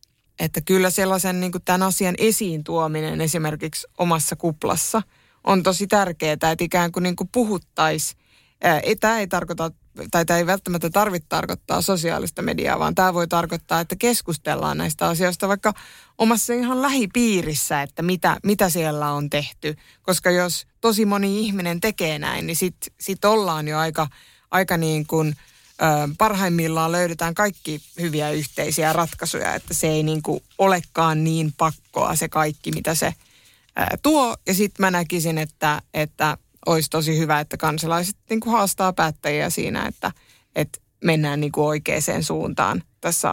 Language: Finnish